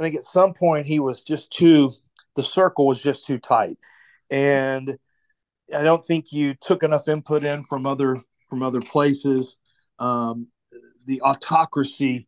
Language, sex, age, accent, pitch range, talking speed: English, male, 40-59, American, 130-155 Hz, 155 wpm